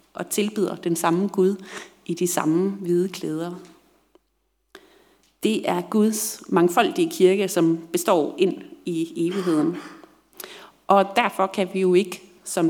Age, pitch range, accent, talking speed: 30-49, 170-200 Hz, native, 130 wpm